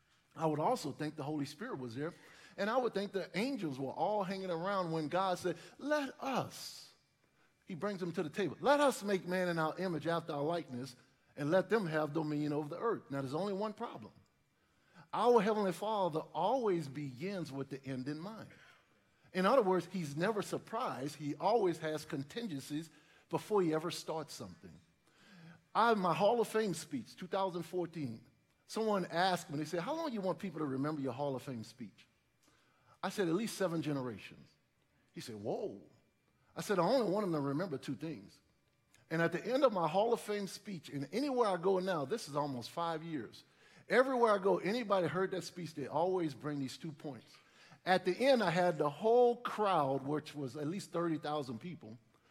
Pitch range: 150-195 Hz